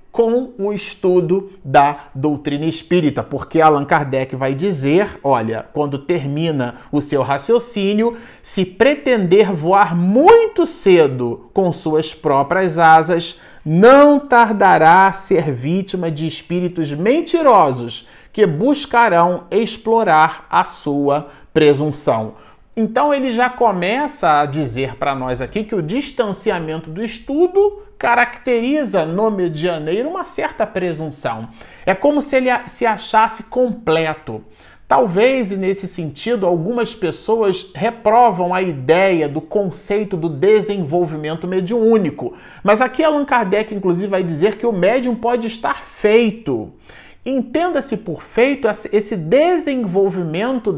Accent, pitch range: Brazilian, 160-235 Hz